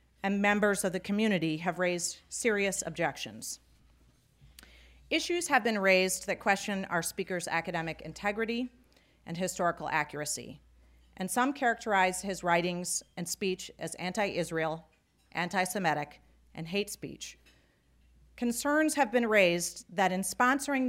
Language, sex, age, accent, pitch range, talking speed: English, female, 40-59, American, 160-215 Hz, 120 wpm